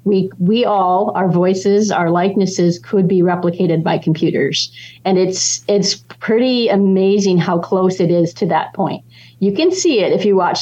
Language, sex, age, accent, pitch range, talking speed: English, female, 40-59, American, 170-200 Hz, 175 wpm